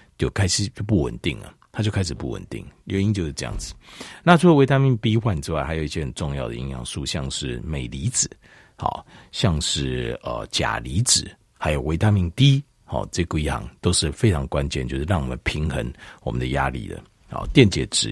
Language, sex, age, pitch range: Chinese, male, 50-69, 75-120 Hz